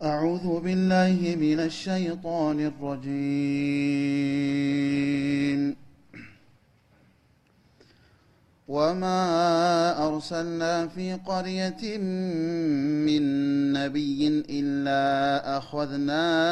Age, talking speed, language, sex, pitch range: 30-49, 45 wpm, Amharic, male, 140-170 Hz